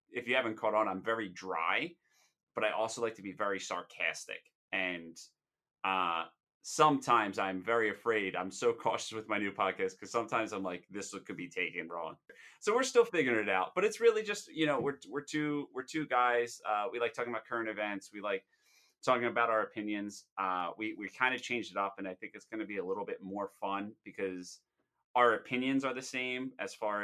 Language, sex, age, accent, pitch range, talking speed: English, male, 30-49, American, 95-125 Hz, 215 wpm